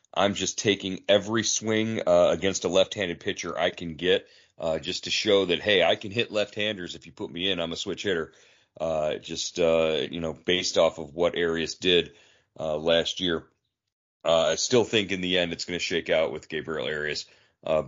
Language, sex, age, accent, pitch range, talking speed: English, male, 40-59, American, 85-105 Hz, 210 wpm